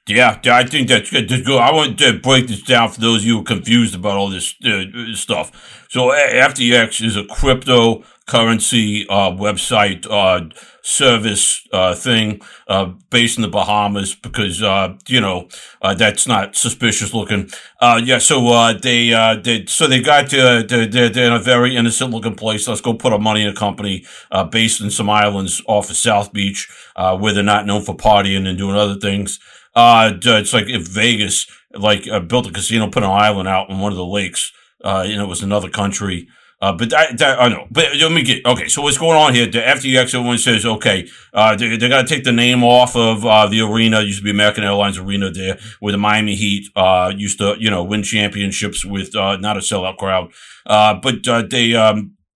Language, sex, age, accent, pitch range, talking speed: English, male, 50-69, American, 100-120 Hz, 210 wpm